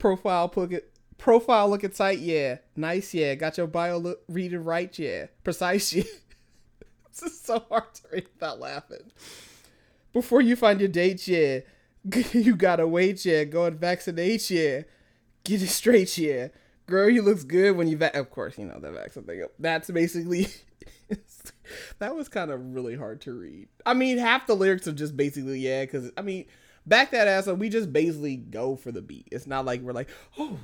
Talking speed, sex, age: 190 wpm, male, 20-39